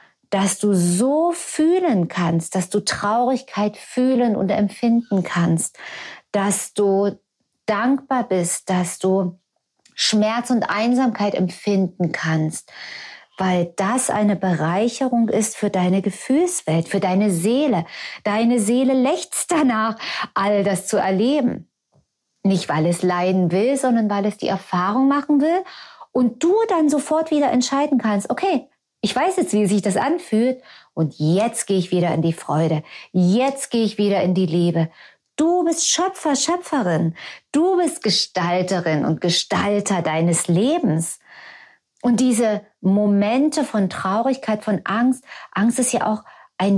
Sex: female